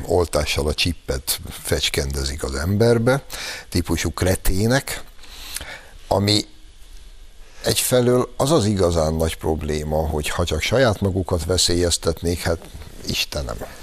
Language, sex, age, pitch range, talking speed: Hungarian, male, 60-79, 75-95 Hz, 100 wpm